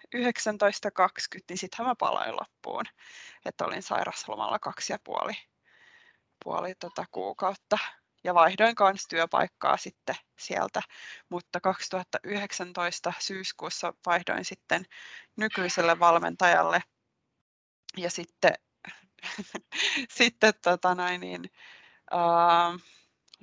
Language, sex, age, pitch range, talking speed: Finnish, female, 20-39, 175-210 Hz, 85 wpm